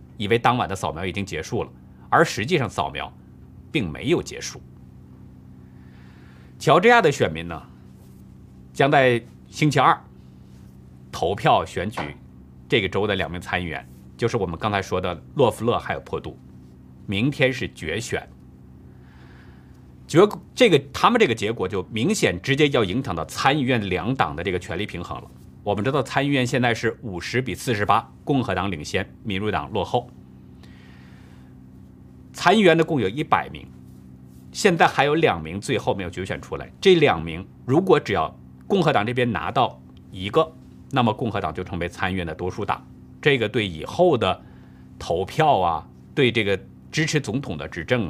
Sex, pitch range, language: male, 65-100 Hz, Chinese